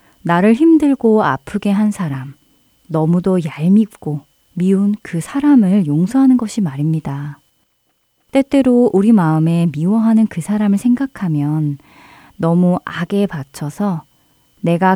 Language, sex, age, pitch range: Korean, female, 30-49, 160-220 Hz